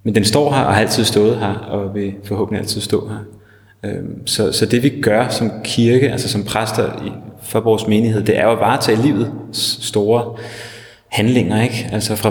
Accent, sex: native, male